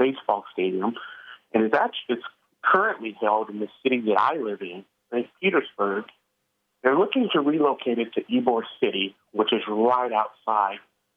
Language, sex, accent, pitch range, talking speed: English, male, American, 115-180 Hz, 160 wpm